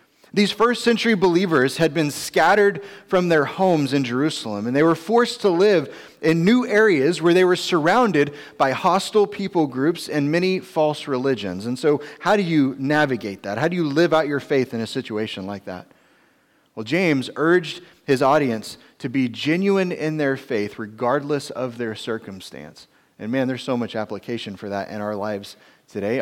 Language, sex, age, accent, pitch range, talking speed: English, male, 30-49, American, 115-160 Hz, 180 wpm